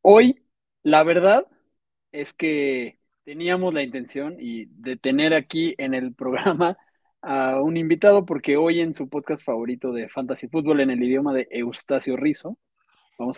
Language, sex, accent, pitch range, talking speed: Spanish, male, Mexican, 125-165 Hz, 155 wpm